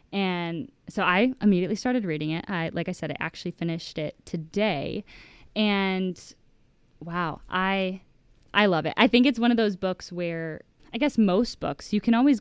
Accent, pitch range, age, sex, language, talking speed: American, 160-190 Hz, 10-29, female, English, 180 wpm